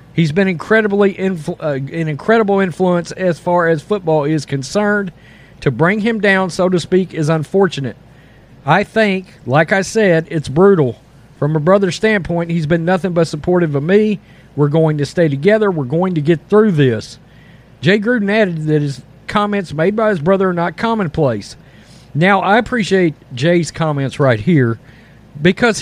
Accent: American